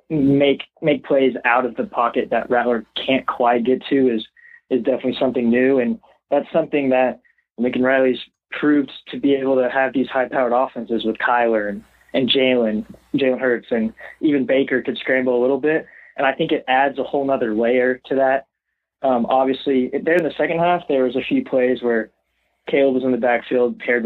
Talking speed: 195 wpm